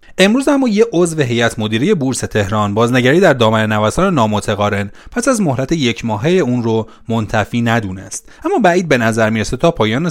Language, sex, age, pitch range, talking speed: Persian, male, 30-49, 105-150 Hz, 170 wpm